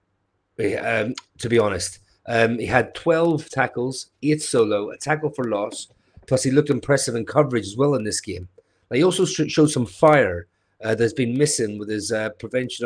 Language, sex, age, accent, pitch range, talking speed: English, male, 30-49, British, 100-130 Hz, 180 wpm